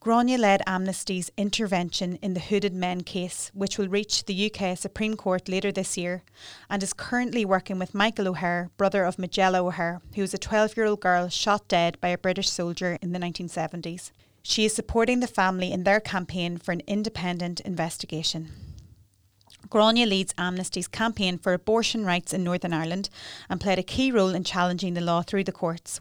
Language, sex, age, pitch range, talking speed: English, female, 30-49, 175-205 Hz, 180 wpm